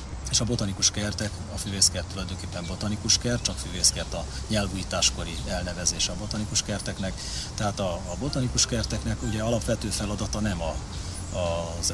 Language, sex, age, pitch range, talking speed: Hungarian, male, 30-49, 90-105 Hz, 130 wpm